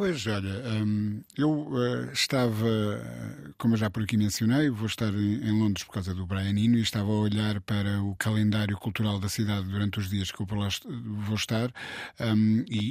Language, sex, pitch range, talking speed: Portuguese, male, 110-135 Hz, 180 wpm